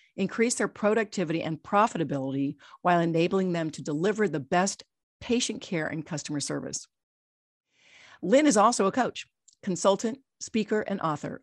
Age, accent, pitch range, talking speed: 50-69, American, 160-210 Hz, 135 wpm